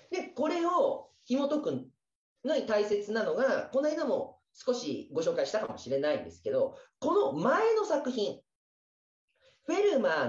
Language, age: Japanese, 40-59